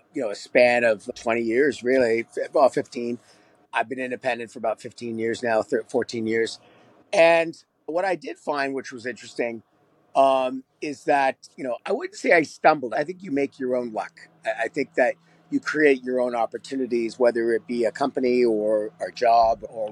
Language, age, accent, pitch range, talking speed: English, 50-69, American, 120-150 Hz, 185 wpm